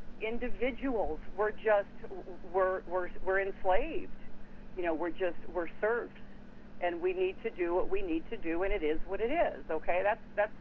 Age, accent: 50-69, American